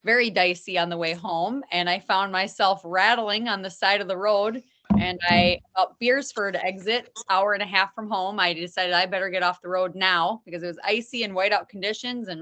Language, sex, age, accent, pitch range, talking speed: English, female, 30-49, American, 180-220 Hz, 215 wpm